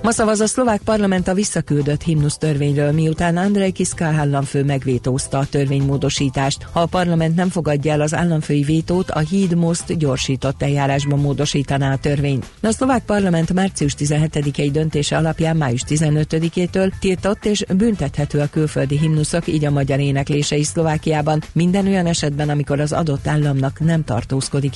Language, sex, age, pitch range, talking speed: Hungarian, female, 50-69, 140-165 Hz, 155 wpm